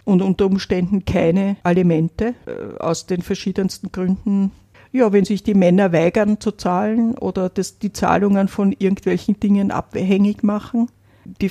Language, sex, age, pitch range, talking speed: German, female, 50-69, 175-205 Hz, 140 wpm